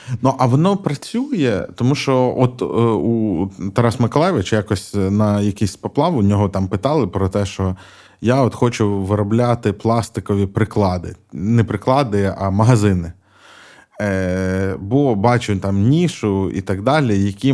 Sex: male